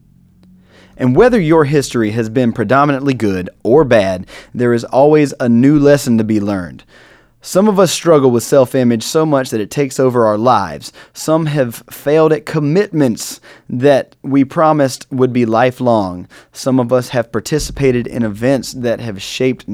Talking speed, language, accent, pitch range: 165 wpm, English, American, 115-140 Hz